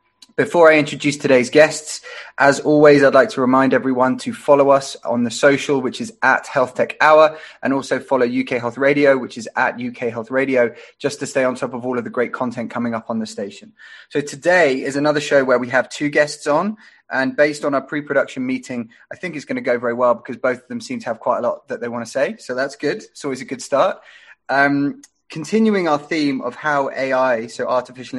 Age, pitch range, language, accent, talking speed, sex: 20-39, 125-150 Hz, English, British, 230 wpm, male